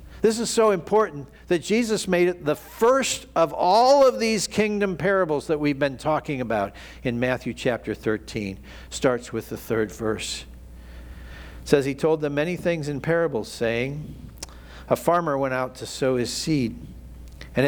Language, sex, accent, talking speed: English, male, American, 165 wpm